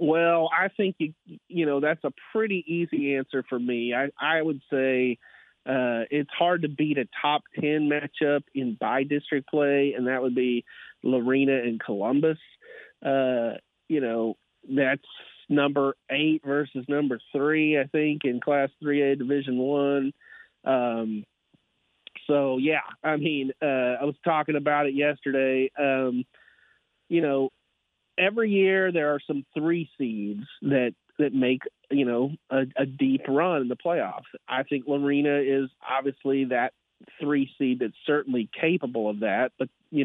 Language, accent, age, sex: English, American, 30-49, male